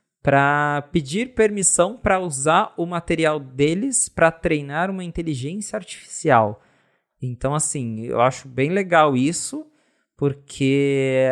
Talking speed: 110 wpm